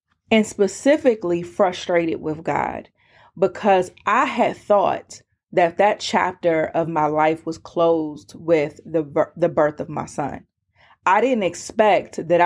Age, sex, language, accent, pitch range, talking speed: 30-49, female, English, American, 165-210 Hz, 135 wpm